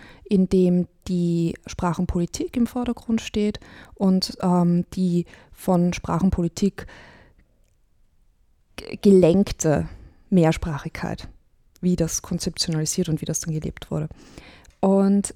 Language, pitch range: German, 170-205 Hz